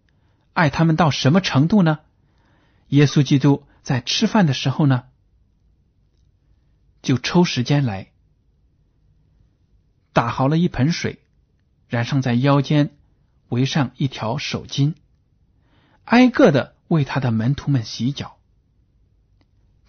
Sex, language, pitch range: male, Chinese, 115-165 Hz